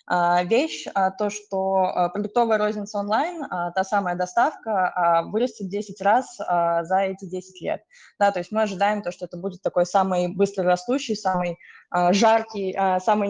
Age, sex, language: 20-39, female, Russian